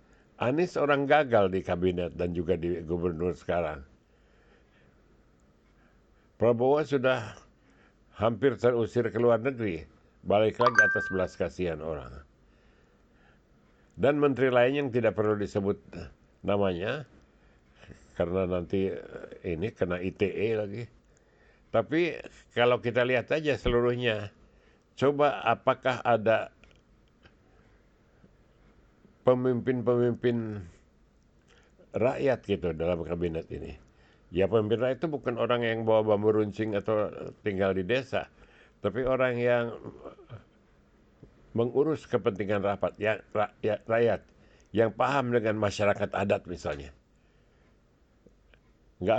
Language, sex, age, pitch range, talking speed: Indonesian, male, 60-79, 90-120 Hz, 100 wpm